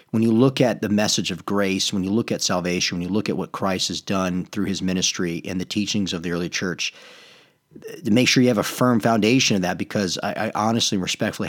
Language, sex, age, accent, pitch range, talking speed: English, male, 40-59, American, 95-115 Hz, 240 wpm